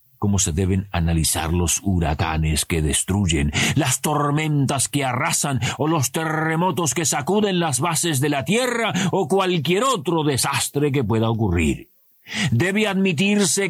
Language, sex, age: Spanish, male, 50-69